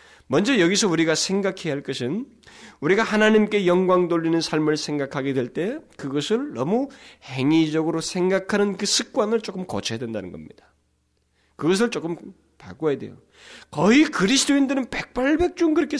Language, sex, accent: Korean, male, native